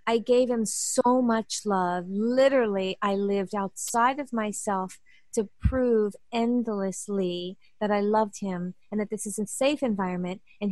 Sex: female